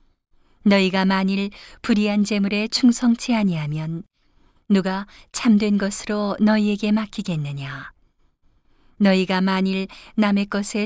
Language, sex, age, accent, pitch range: Korean, female, 40-59, native, 185-215 Hz